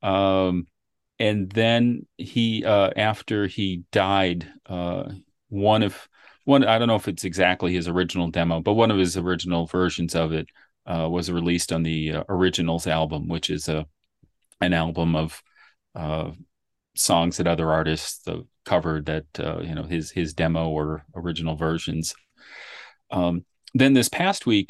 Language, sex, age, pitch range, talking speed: English, male, 40-59, 85-100 Hz, 155 wpm